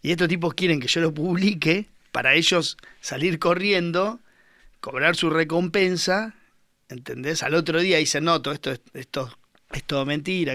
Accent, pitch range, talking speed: Argentinian, 135-165 Hz, 165 wpm